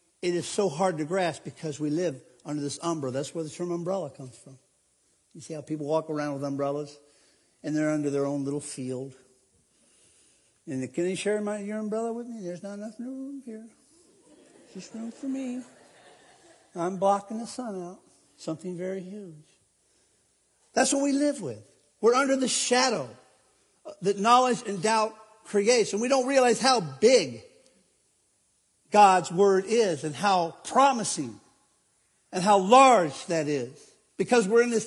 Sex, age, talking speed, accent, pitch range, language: male, 60-79, 160 wpm, American, 170-225 Hz, English